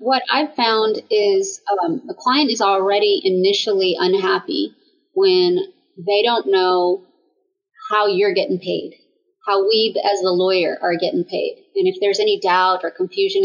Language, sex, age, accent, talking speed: English, female, 30-49, American, 150 wpm